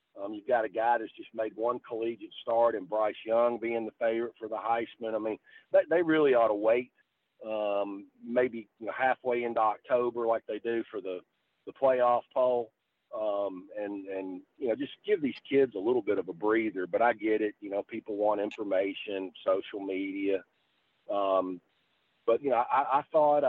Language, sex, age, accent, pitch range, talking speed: English, male, 40-59, American, 110-140 Hz, 185 wpm